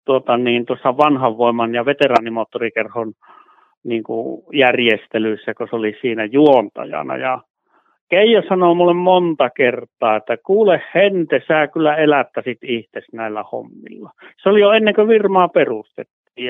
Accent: native